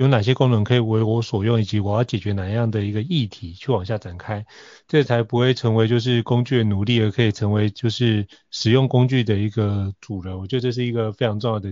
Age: 30-49